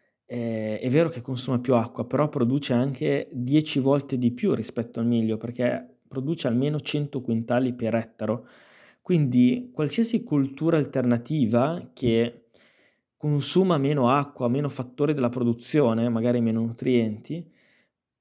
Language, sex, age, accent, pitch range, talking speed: Italian, male, 20-39, native, 120-150 Hz, 130 wpm